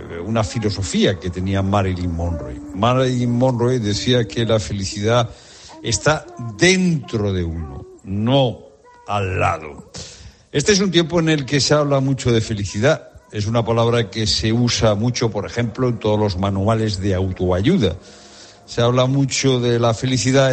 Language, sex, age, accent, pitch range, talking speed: Spanish, male, 60-79, Spanish, 100-125 Hz, 150 wpm